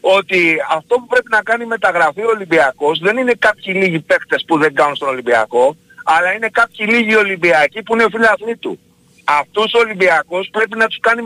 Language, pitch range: Greek, 175-230 Hz